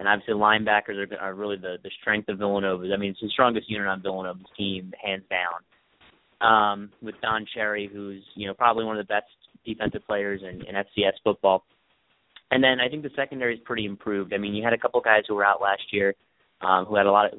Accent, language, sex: American, English, male